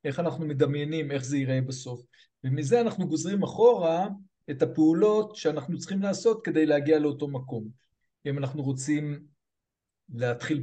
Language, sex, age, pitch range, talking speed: Hebrew, male, 50-69, 140-180 Hz, 135 wpm